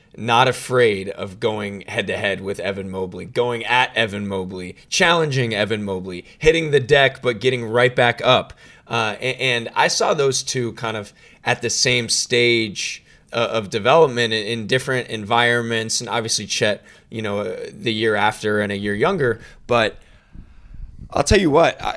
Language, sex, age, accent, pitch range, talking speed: English, male, 20-39, American, 110-135 Hz, 155 wpm